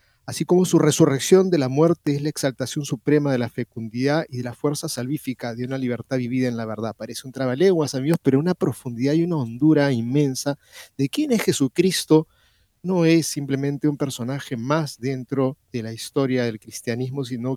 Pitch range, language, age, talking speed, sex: 130-165 Hz, Spanish, 40-59, 185 wpm, male